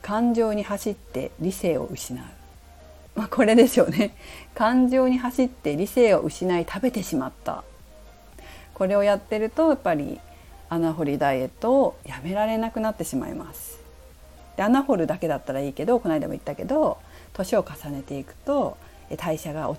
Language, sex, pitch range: Japanese, female, 150-245 Hz